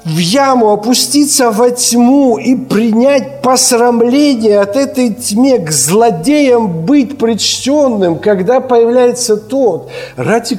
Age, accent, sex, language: 50-69, native, male, Ukrainian